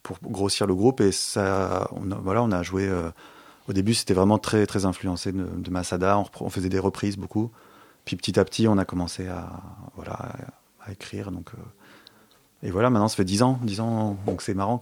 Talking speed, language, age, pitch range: 225 wpm, French, 30-49, 90-110 Hz